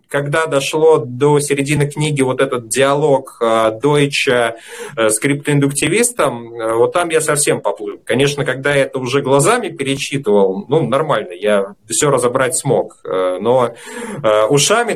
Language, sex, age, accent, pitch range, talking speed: Russian, male, 30-49, native, 110-145 Hz, 125 wpm